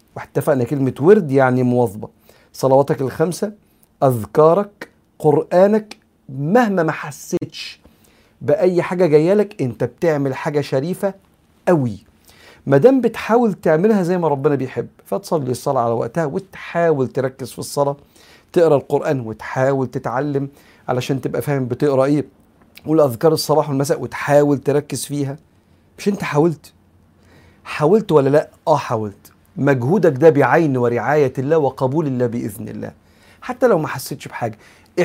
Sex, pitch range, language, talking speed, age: male, 125-170 Hz, Arabic, 125 wpm, 50-69